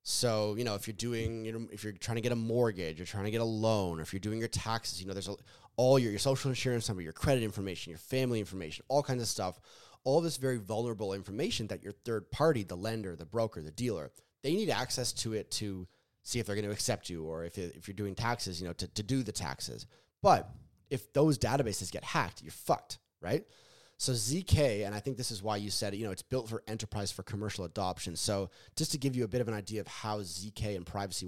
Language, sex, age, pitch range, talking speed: English, male, 20-39, 100-125 Hz, 255 wpm